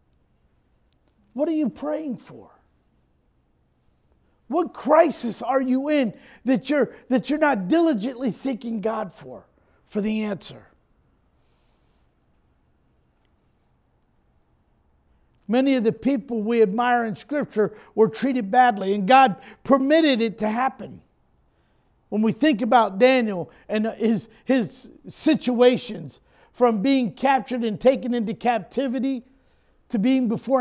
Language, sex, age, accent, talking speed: English, male, 50-69, American, 110 wpm